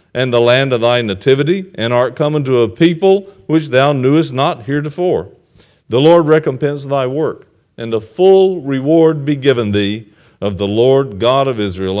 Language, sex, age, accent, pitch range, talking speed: English, male, 50-69, American, 90-125 Hz, 175 wpm